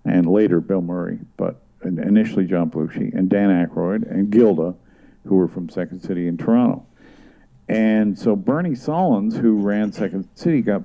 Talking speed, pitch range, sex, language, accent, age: 160 wpm, 95-110 Hz, male, English, American, 50-69